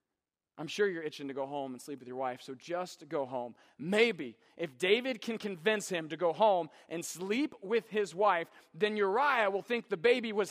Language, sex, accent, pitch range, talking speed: English, male, American, 150-220 Hz, 210 wpm